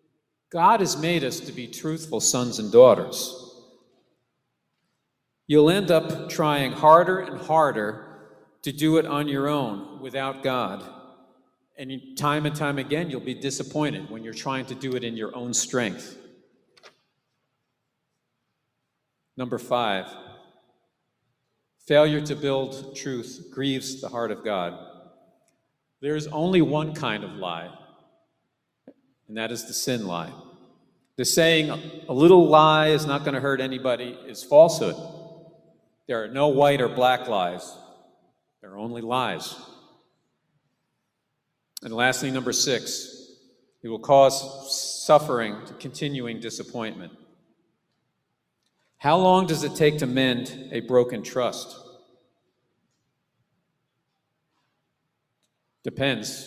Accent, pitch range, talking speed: American, 125-155 Hz, 120 wpm